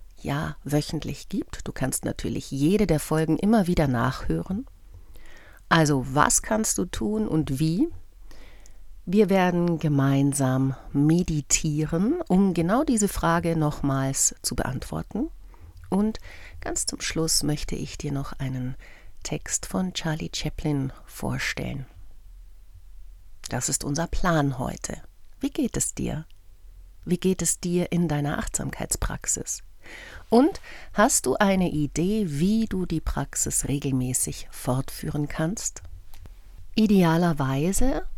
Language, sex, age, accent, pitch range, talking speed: German, female, 60-79, German, 110-165 Hz, 115 wpm